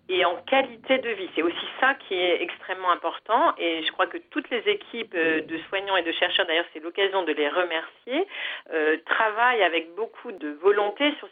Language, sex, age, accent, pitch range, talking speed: French, female, 40-59, French, 160-245 Hz, 195 wpm